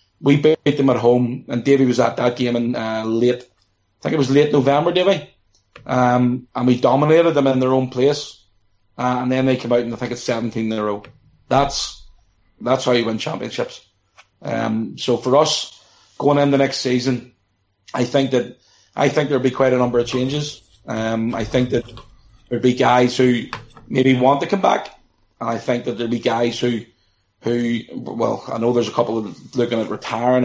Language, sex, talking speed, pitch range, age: English, male, 200 wpm, 115-130 Hz, 30-49